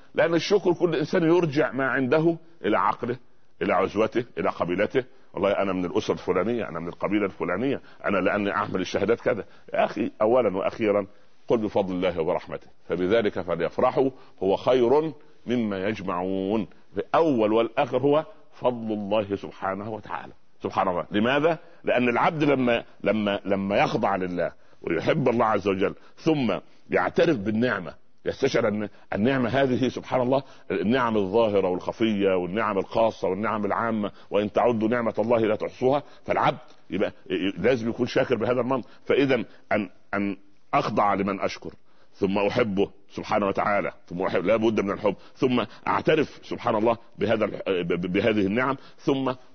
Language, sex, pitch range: Arabic, male, 100-130 Hz